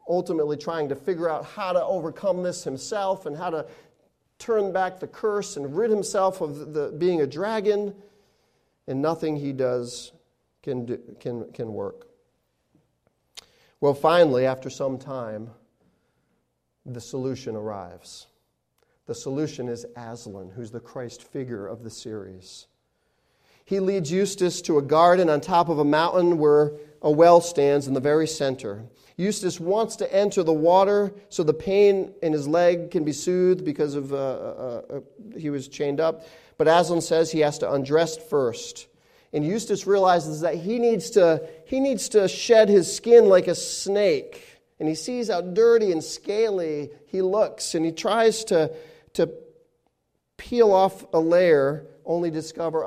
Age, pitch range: 40-59, 140-195 Hz